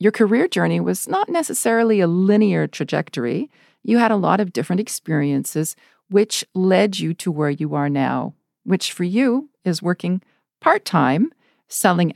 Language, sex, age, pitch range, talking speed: English, female, 50-69, 150-195 Hz, 155 wpm